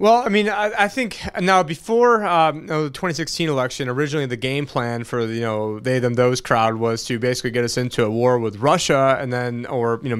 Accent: American